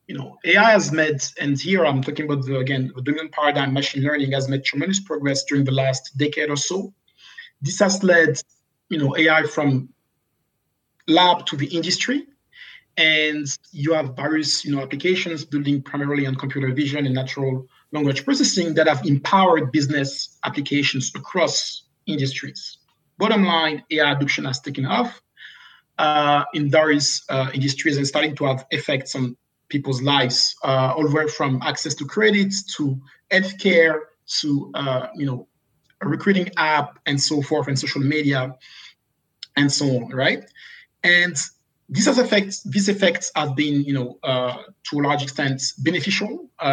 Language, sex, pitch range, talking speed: English, male, 135-160 Hz, 155 wpm